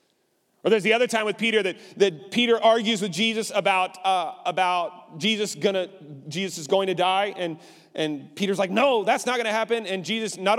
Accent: American